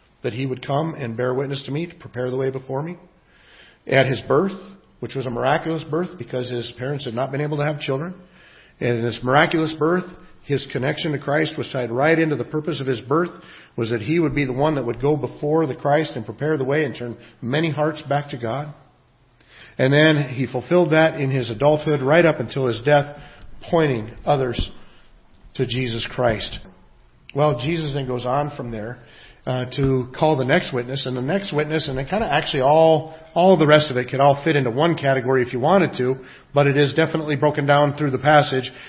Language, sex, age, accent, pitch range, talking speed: English, male, 50-69, American, 130-160 Hz, 215 wpm